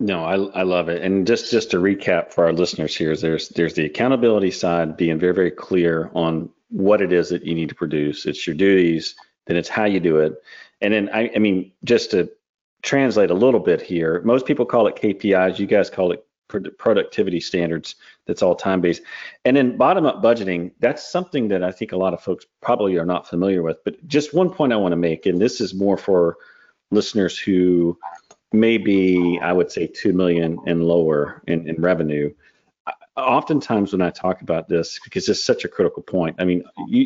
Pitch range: 85-105 Hz